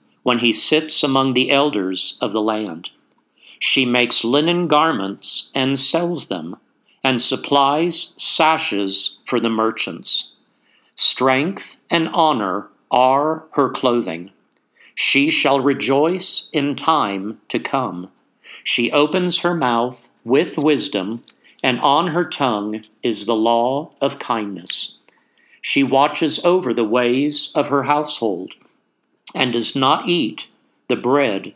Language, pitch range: English, 115-150 Hz